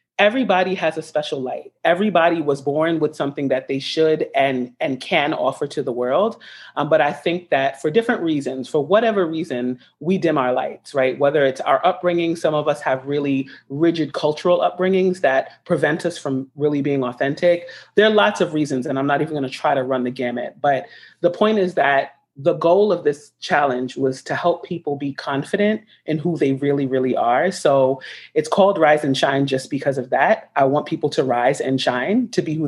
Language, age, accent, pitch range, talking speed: English, 30-49, American, 135-170 Hz, 210 wpm